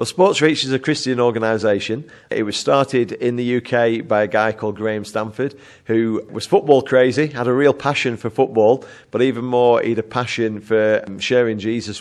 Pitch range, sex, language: 110-130 Hz, male, English